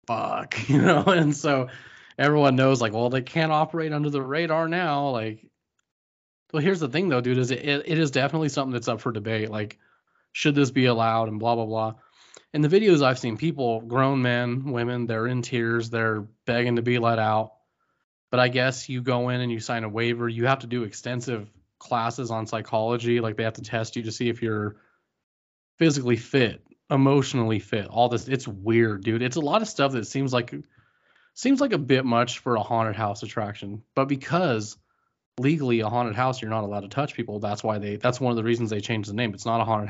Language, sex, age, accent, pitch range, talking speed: English, male, 20-39, American, 110-135 Hz, 215 wpm